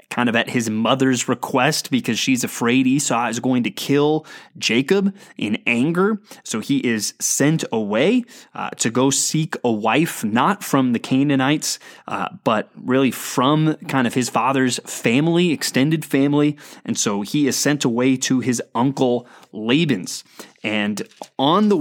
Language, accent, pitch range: English, American, 130-170 Hz